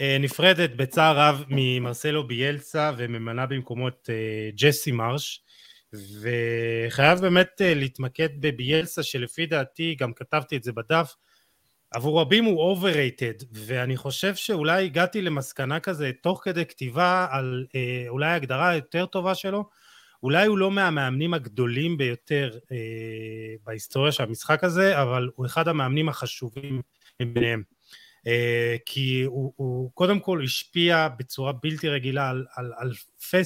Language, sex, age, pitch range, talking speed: Hebrew, male, 30-49, 125-155 Hz, 125 wpm